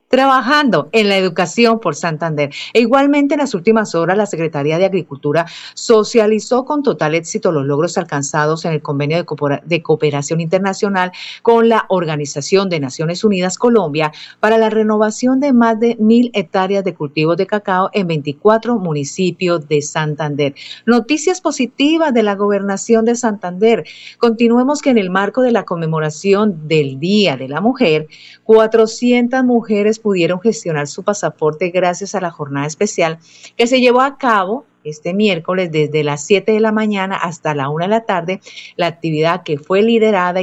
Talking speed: 160 wpm